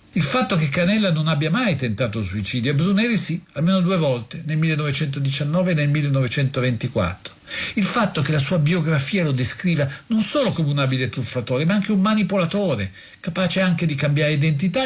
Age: 50-69